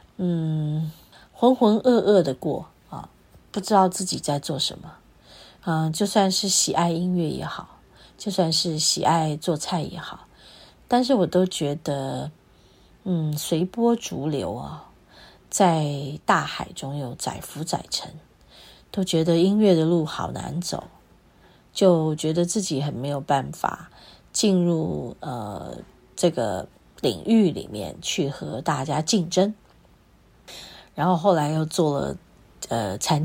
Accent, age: native, 30-49